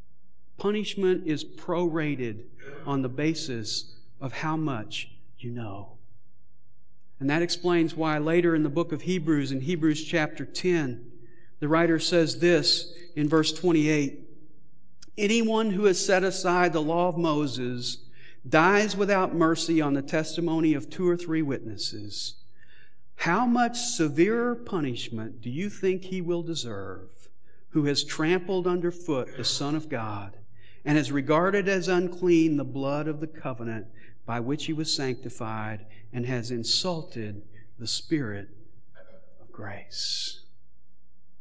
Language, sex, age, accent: English, male, 50-69, American